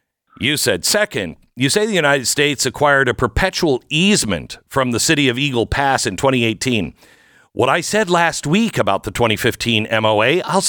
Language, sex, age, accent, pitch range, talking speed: English, male, 50-69, American, 120-175 Hz, 170 wpm